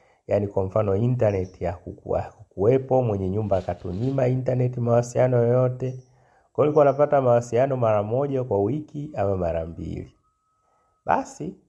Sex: male